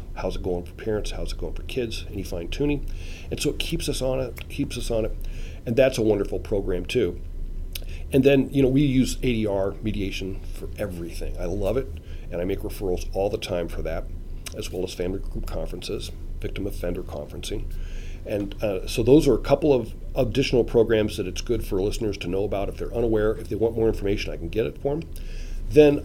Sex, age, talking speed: male, 40-59, 210 wpm